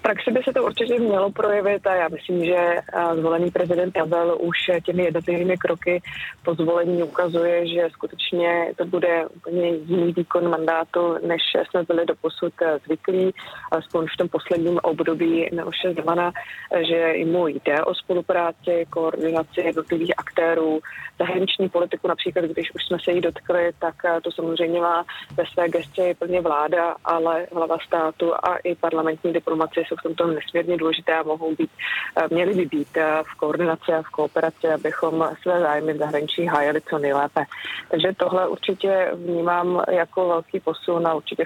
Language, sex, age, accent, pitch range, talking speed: Czech, female, 20-39, native, 160-180 Hz, 160 wpm